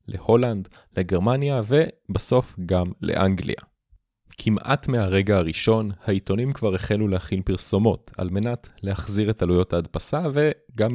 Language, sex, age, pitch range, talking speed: Hebrew, male, 30-49, 95-120 Hz, 110 wpm